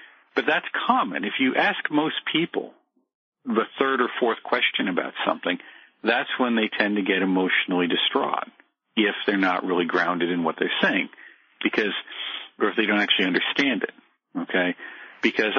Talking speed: 160 wpm